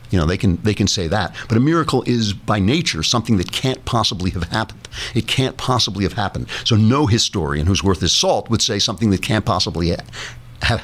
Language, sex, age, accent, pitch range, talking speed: English, male, 60-79, American, 90-120 Hz, 220 wpm